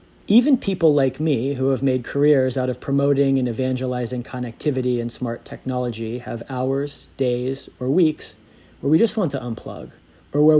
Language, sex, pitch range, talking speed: English, male, 120-145 Hz, 170 wpm